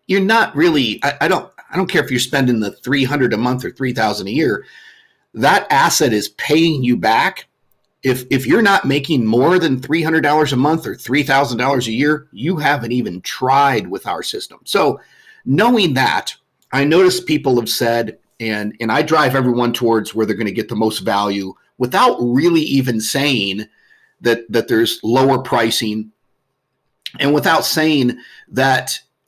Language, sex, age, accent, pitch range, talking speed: English, male, 50-69, American, 115-150 Hz, 170 wpm